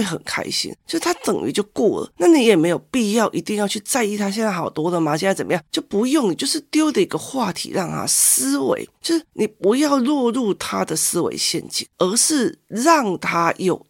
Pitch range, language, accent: 170-280 Hz, Chinese, native